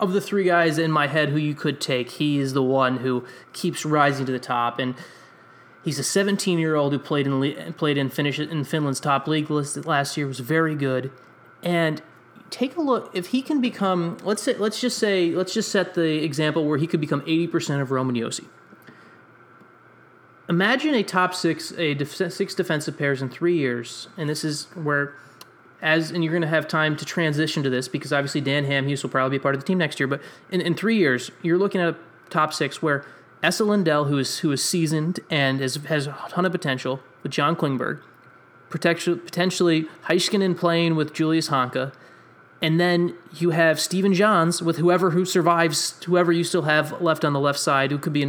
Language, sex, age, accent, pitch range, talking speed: English, male, 30-49, American, 140-175 Hz, 210 wpm